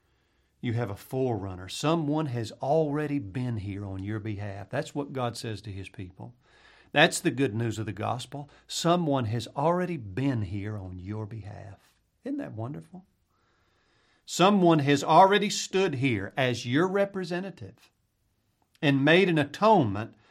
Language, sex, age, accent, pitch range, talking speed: English, male, 50-69, American, 110-155 Hz, 145 wpm